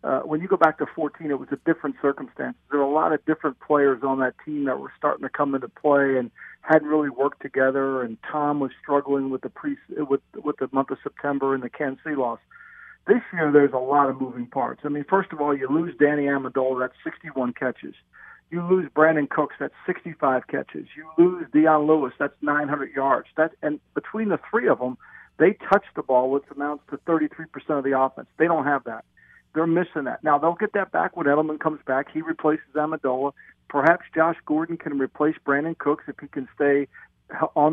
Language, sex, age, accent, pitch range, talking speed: English, male, 50-69, American, 140-165 Hz, 215 wpm